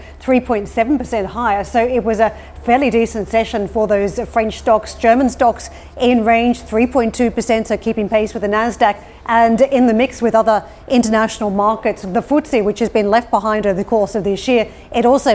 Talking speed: 180 wpm